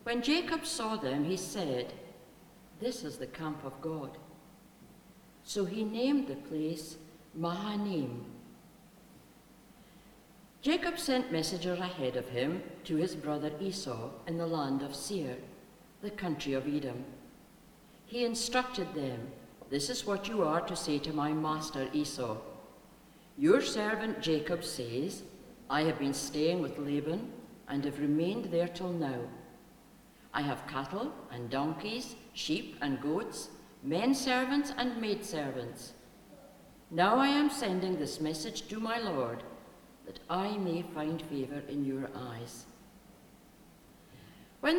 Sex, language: female, English